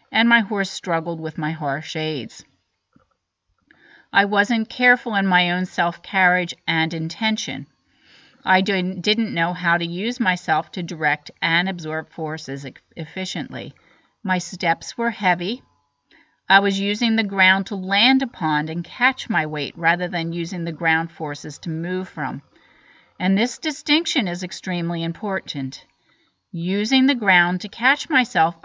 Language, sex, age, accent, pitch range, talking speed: English, female, 40-59, American, 165-215 Hz, 140 wpm